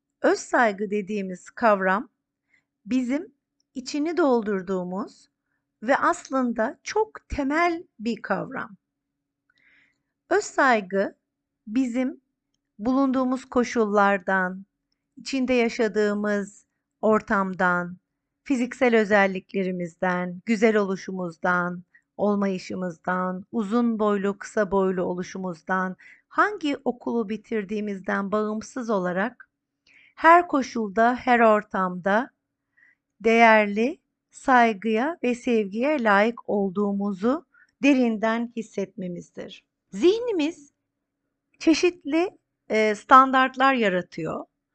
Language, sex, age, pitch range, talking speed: Turkish, female, 50-69, 195-265 Hz, 70 wpm